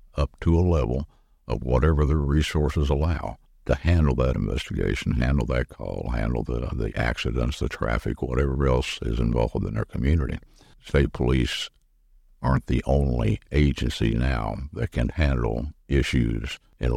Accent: American